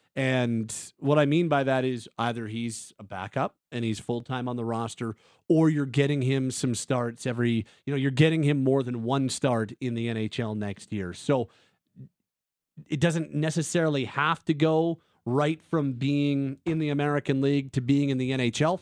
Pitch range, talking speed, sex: 120-150 Hz, 185 wpm, male